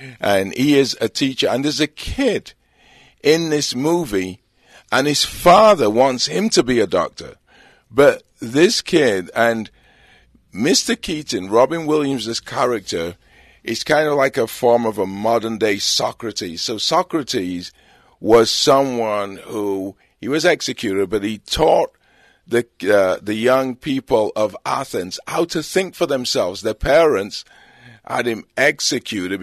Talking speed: 140 wpm